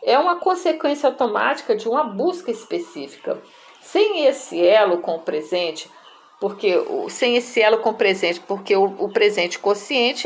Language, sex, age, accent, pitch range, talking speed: Portuguese, female, 50-69, Brazilian, 210-310 Hz, 150 wpm